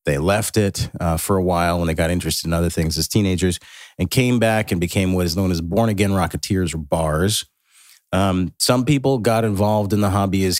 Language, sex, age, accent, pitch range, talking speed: English, male, 40-59, American, 90-115 Hz, 220 wpm